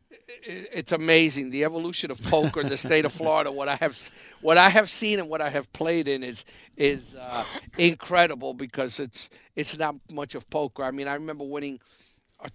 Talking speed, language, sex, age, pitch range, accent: 195 wpm, English, male, 50-69, 120-145 Hz, American